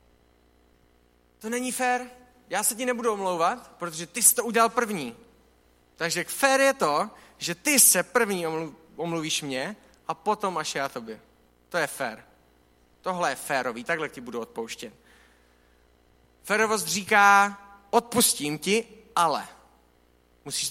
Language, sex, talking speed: Czech, male, 130 wpm